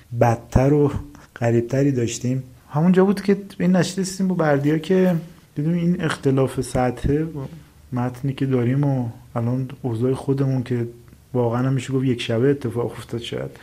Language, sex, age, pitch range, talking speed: Persian, male, 30-49, 120-140 Hz, 135 wpm